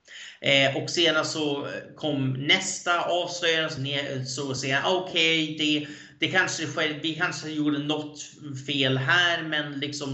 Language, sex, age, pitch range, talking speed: Swedish, male, 30-49, 135-165 Hz, 150 wpm